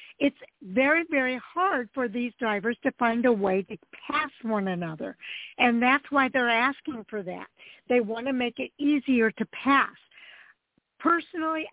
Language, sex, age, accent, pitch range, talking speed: English, female, 60-79, American, 200-245 Hz, 160 wpm